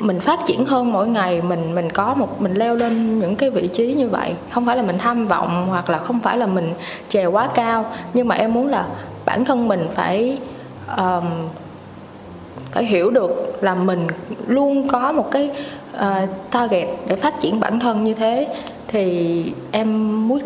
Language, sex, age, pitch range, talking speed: Vietnamese, female, 20-39, 185-250 Hz, 190 wpm